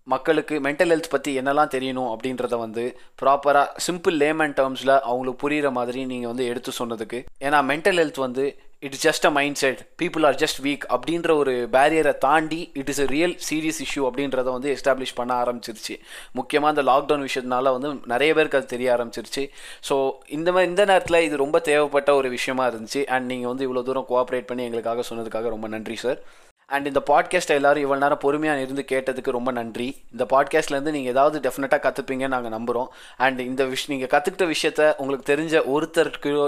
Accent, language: native, Tamil